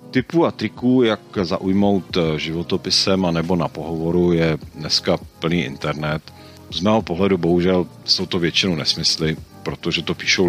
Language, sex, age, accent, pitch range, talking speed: Czech, male, 40-59, native, 85-100 Hz, 135 wpm